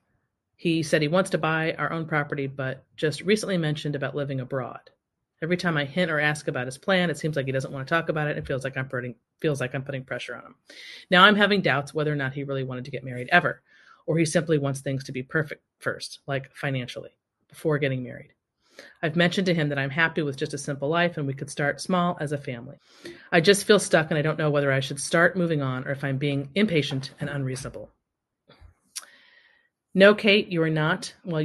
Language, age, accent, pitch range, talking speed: English, 30-49, American, 135-170 Hz, 225 wpm